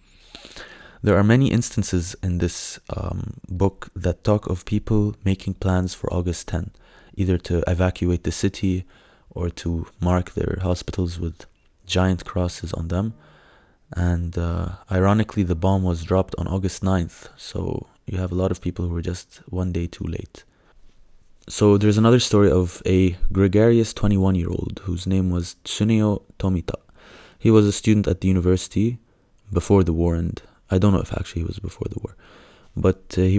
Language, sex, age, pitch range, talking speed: English, male, 20-39, 85-100 Hz, 165 wpm